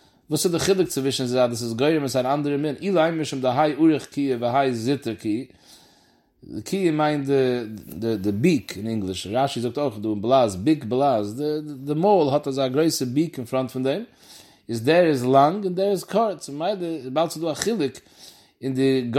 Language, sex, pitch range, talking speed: English, male, 125-155 Hz, 95 wpm